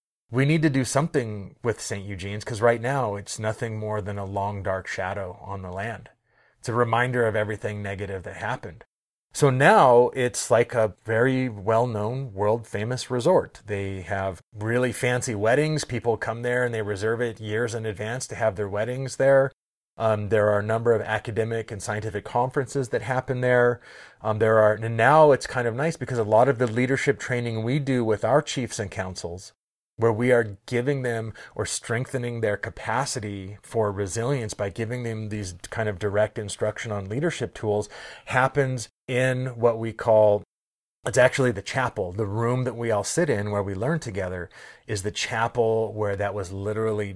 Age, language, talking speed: 30-49, English, 185 wpm